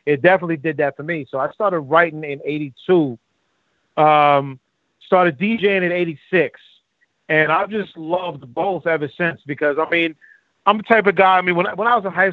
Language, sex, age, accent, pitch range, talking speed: English, male, 30-49, American, 145-175 Hz, 200 wpm